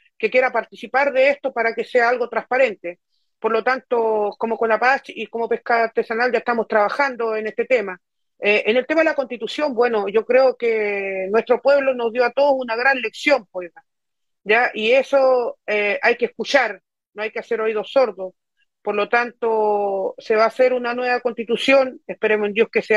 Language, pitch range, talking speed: Spanish, 215-250 Hz, 195 wpm